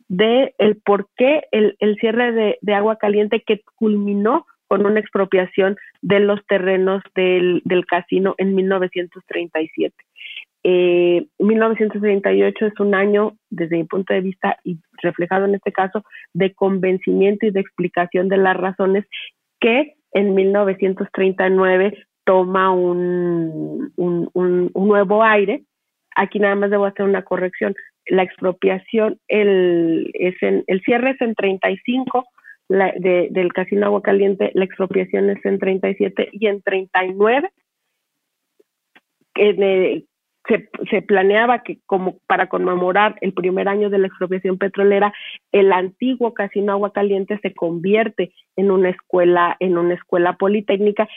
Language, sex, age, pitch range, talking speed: Spanish, female, 30-49, 185-210 Hz, 140 wpm